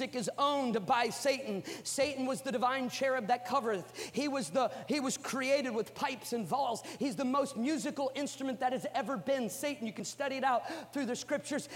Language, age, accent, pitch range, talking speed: English, 40-59, American, 210-270 Hz, 190 wpm